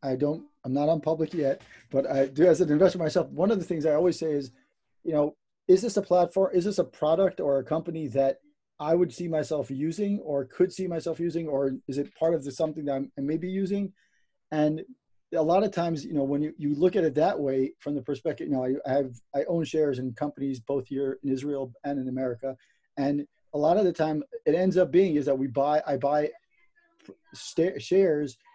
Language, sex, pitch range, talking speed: English, male, 140-170 Hz, 230 wpm